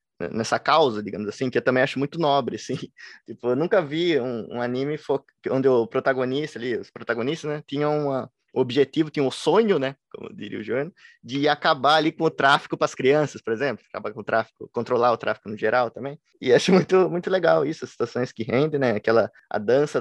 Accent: Brazilian